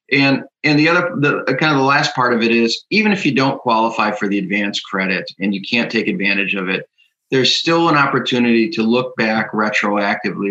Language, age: English, 30-49